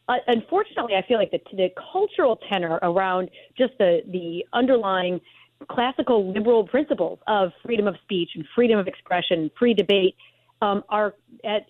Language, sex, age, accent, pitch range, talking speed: English, female, 40-59, American, 180-220 Hz, 155 wpm